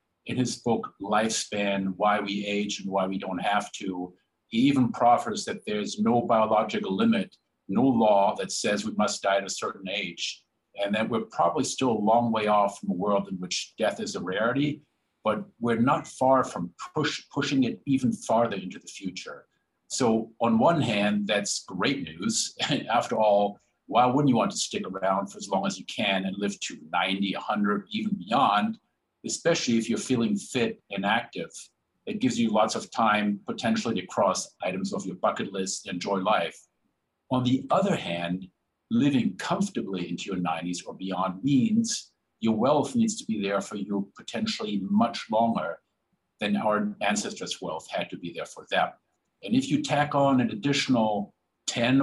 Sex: male